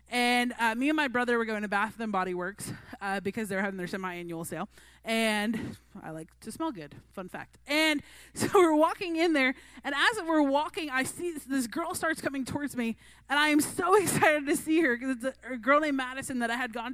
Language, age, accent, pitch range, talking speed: English, 20-39, American, 235-315 Hz, 235 wpm